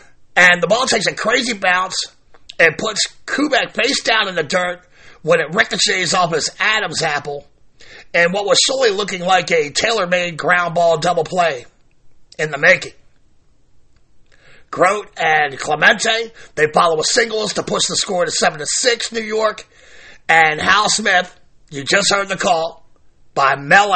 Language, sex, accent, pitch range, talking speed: English, male, American, 165-205 Hz, 155 wpm